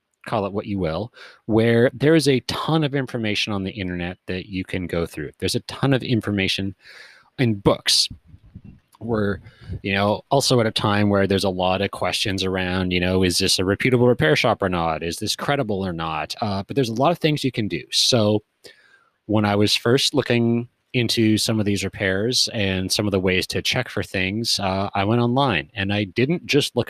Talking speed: 210 wpm